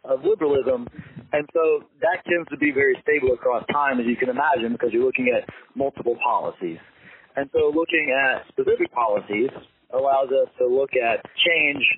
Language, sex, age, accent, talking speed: English, male, 40-59, American, 170 wpm